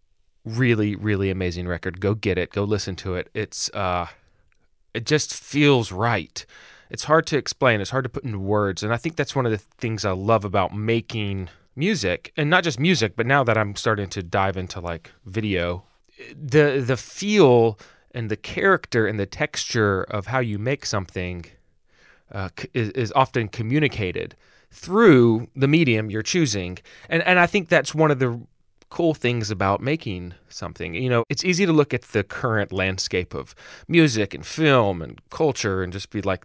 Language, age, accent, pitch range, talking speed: English, 30-49, American, 100-140 Hz, 185 wpm